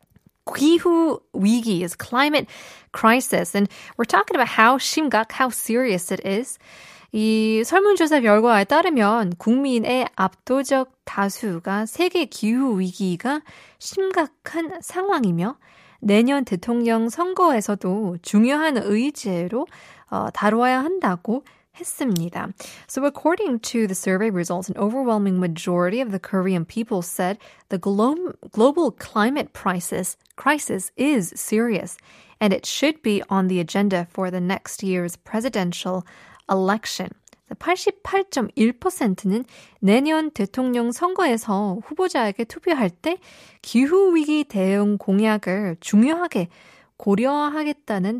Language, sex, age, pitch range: Korean, female, 20-39, 195-280 Hz